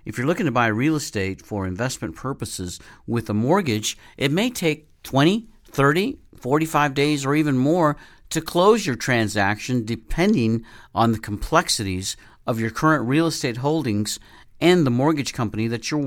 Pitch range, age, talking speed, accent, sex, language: 105-140 Hz, 50-69, 160 wpm, American, male, English